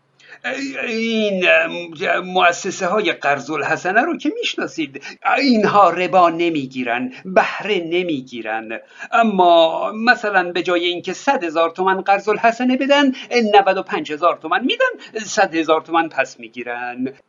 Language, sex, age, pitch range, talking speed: Persian, male, 50-69, 160-240 Hz, 120 wpm